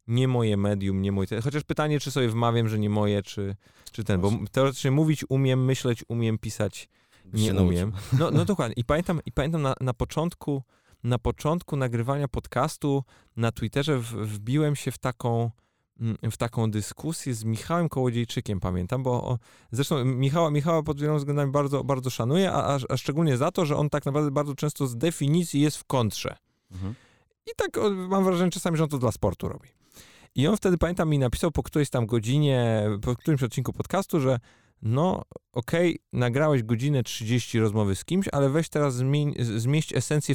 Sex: male